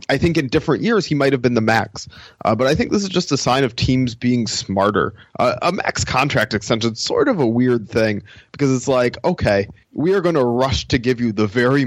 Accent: American